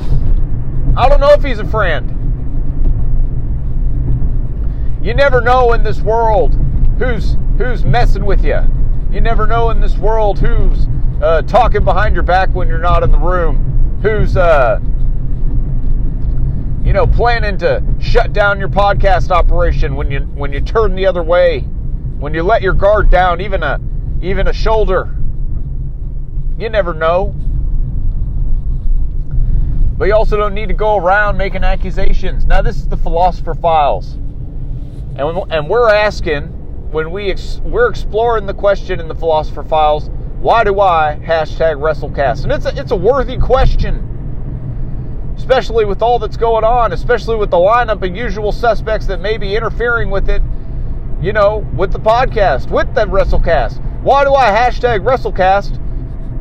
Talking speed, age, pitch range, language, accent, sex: 155 wpm, 40-59, 125-210 Hz, English, American, male